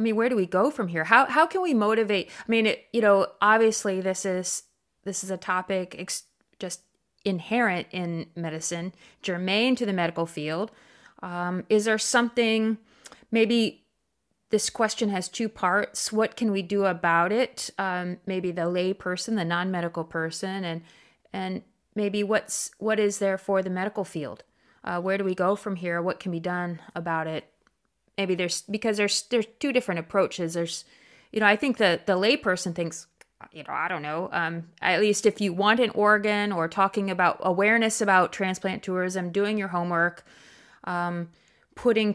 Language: English